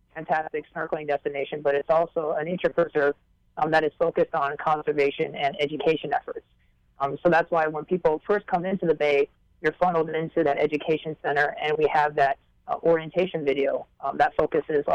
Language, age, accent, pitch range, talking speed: English, 30-49, American, 150-170 Hz, 180 wpm